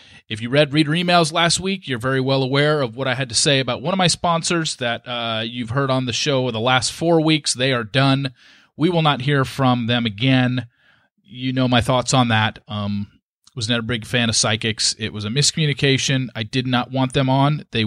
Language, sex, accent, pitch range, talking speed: English, male, American, 115-155 Hz, 230 wpm